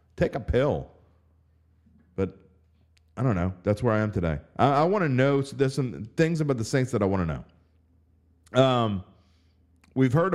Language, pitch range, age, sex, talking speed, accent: English, 85-120 Hz, 40-59, male, 185 wpm, American